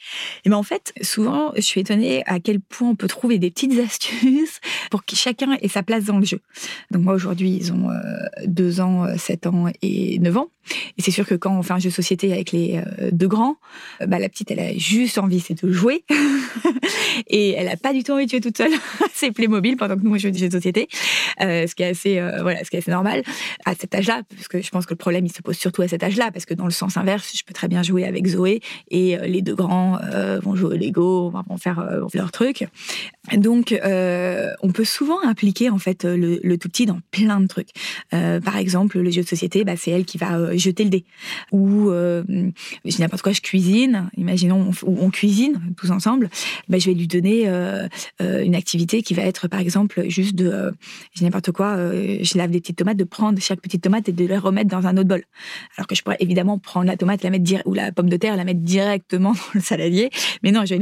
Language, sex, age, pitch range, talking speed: French, female, 20-39, 180-210 Hz, 245 wpm